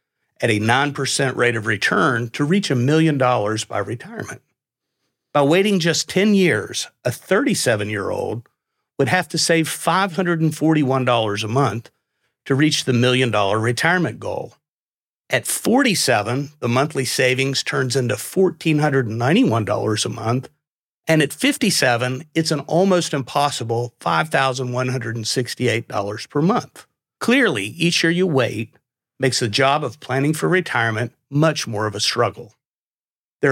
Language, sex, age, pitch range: English, male, 50-69, 115-155 Hz